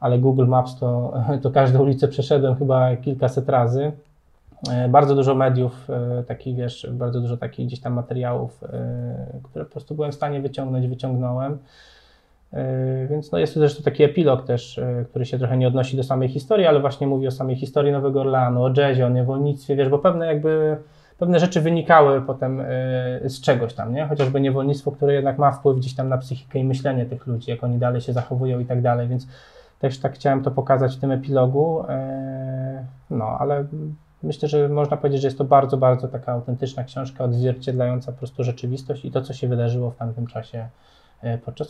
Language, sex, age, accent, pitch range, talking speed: Polish, male, 20-39, native, 125-145 Hz, 185 wpm